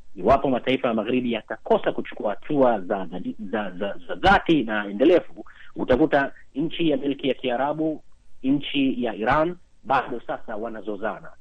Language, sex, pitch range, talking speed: Swahili, male, 120-155 Hz, 155 wpm